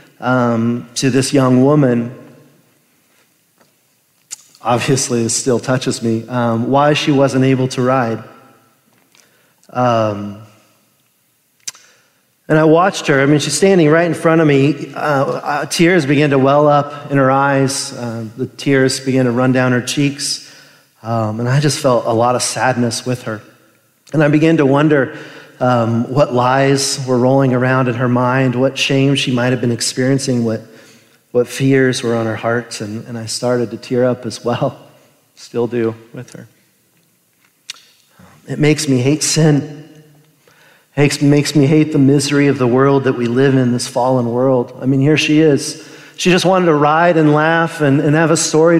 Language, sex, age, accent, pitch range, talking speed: English, male, 40-59, American, 120-150 Hz, 170 wpm